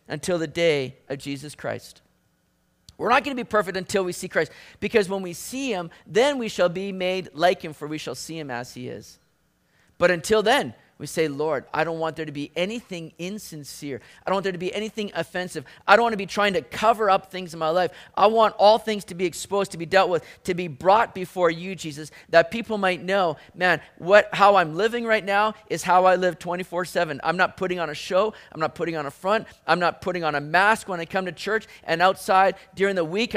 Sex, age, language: male, 30-49, English